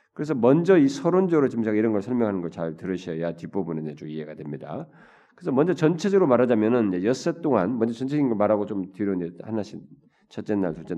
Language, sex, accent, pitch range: Korean, male, native, 90-135 Hz